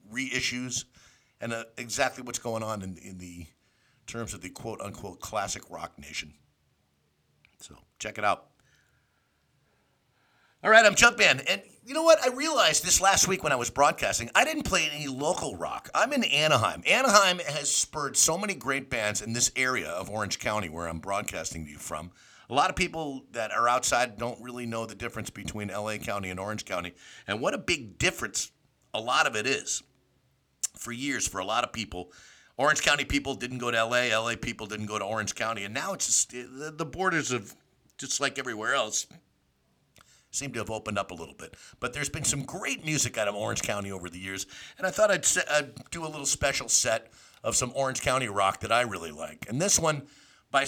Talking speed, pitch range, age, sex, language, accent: 200 wpm, 105-145 Hz, 50-69, male, English, American